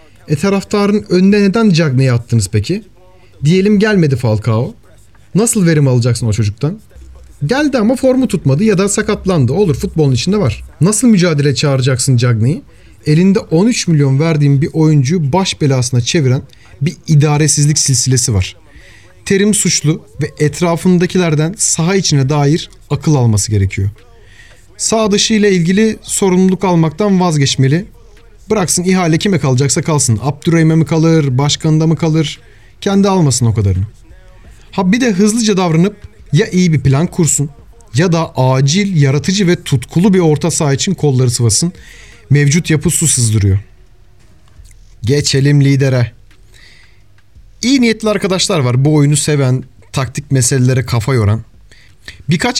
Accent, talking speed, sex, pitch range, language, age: native, 130 wpm, male, 120-180 Hz, Turkish, 40-59